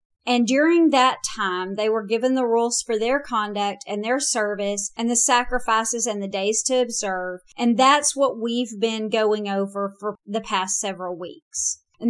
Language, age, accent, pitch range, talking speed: English, 40-59, American, 205-255 Hz, 180 wpm